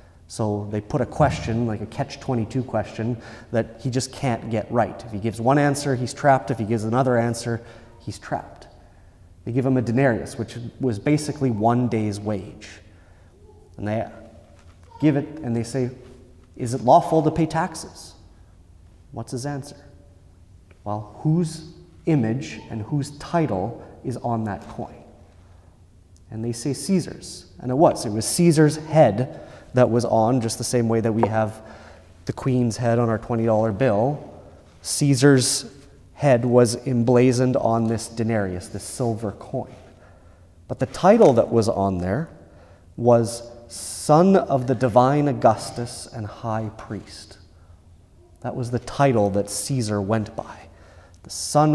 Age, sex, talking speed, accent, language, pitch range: 30-49, male, 150 wpm, American, English, 95-130 Hz